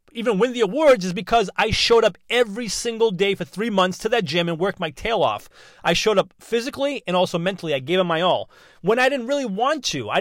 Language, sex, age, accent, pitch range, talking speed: English, male, 30-49, American, 185-250 Hz, 245 wpm